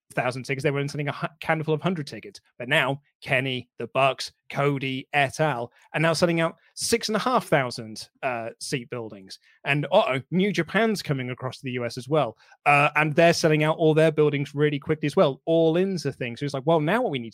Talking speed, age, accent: 225 wpm, 30-49, British